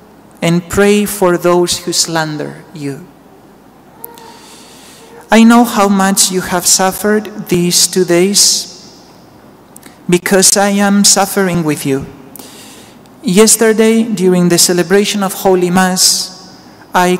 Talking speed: 110 wpm